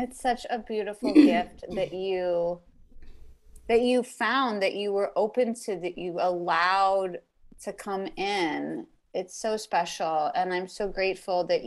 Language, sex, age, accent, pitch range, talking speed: English, female, 30-49, American, 180-225 Hz, 150 wpm